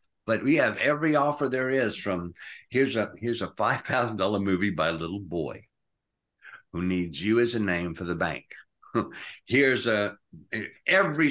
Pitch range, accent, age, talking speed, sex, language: 90-120 Hz, American, 60-79, 160 wpm, male, English